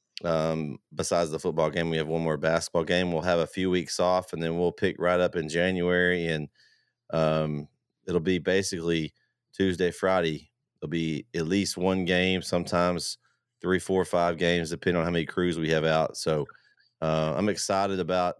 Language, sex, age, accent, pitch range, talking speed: English, male, 30-49, American, 80-90 Hz, 185 wpm